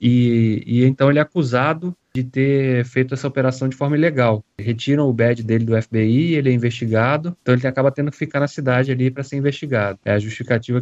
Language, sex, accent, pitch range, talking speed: Portuguese, male, Brazilian, 115-145 Hz, 210 wpm